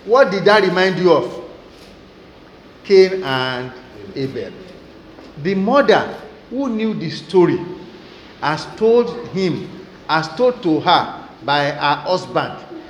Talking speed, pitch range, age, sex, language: 115 wpm, 155-210 Hz, 50-69, male, English